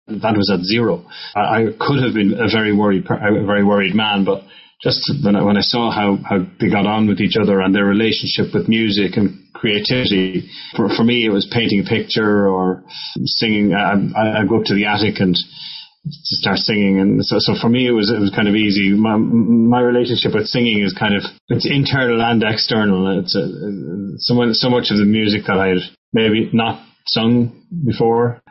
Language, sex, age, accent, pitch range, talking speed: English, male, 30-49, Irish, 100-120 Hz, 195 wpm